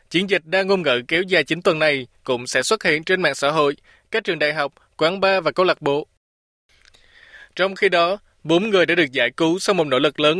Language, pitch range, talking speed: Vietnamese, 150-190 Hz, 240 wpm